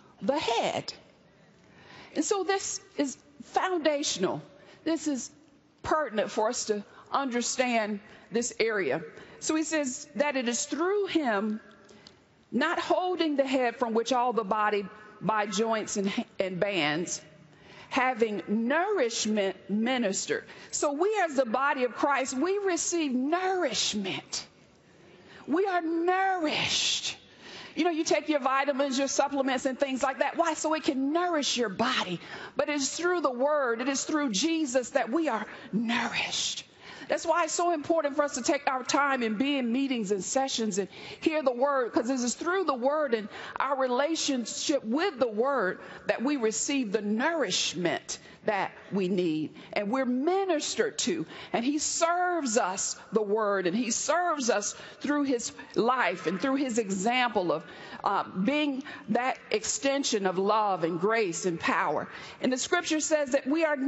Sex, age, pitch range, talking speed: female, 50-69, 220-315 Hz, 155 wpm